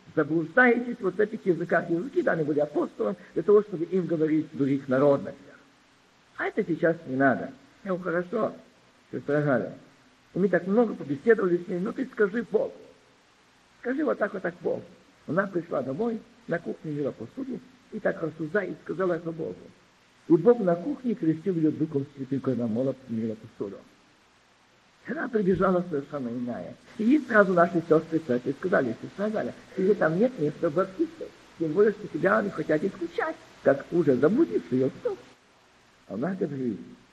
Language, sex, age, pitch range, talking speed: Russian, male, 50-69, 150-215 Hz, 160 wpm